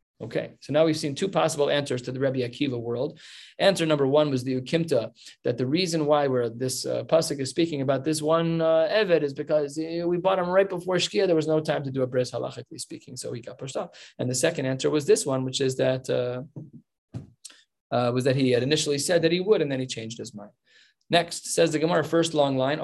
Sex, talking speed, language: male, 240 wpm, English